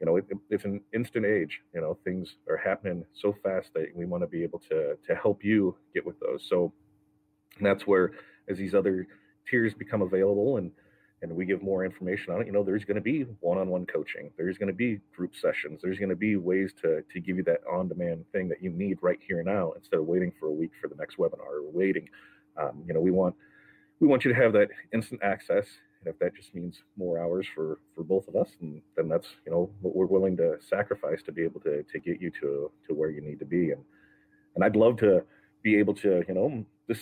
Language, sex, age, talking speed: English, male, 30-49, 240 wpm